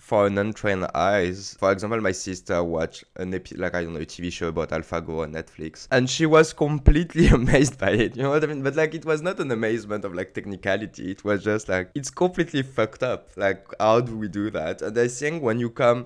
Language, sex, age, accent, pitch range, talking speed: English, male, 20-39, French, 90-120 Hz, 240 wpm